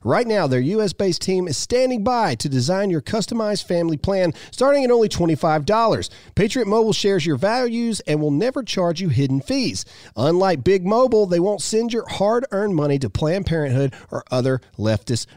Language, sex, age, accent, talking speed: English, male, 40-59, American, 175 wpm